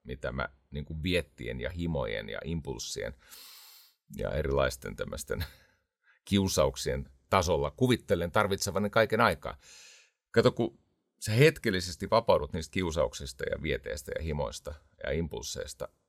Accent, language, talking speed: native, Finnish, 110 wpm